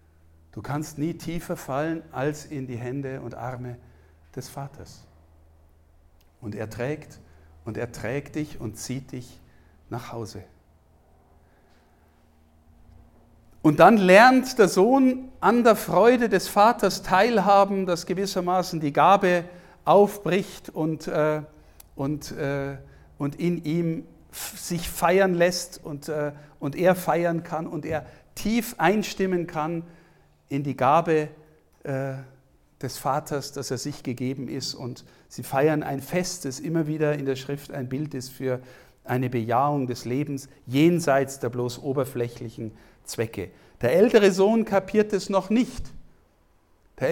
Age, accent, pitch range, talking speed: 50-69, German, 125-190 Hz, 135 wpm